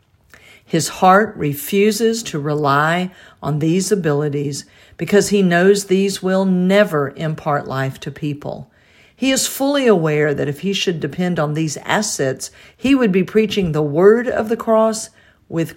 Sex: female